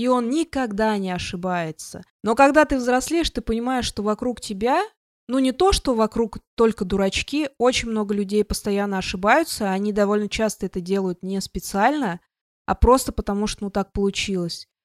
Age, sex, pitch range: 20-39, female, 200-255 Hz